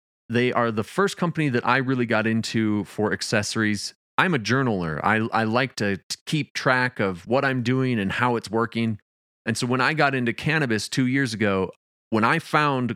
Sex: male